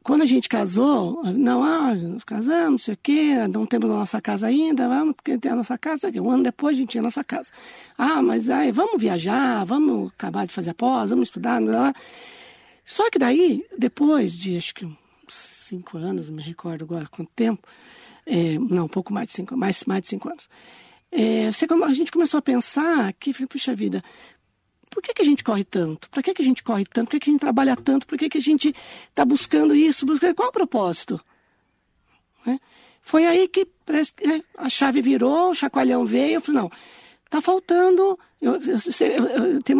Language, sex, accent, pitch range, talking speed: Portuguese, female, Brazilian, 235-320 Hz, 215 wpm